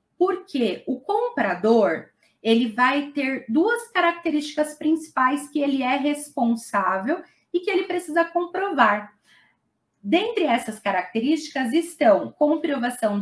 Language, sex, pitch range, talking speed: Portuguese, female, 240-335 Hz, 105 wpm